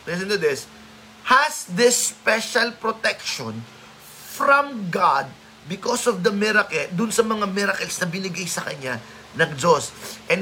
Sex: male